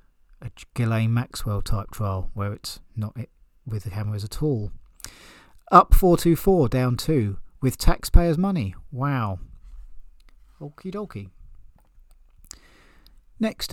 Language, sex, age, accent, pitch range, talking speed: English, male, 40-59, British, 105-140 Hz, 105 wpm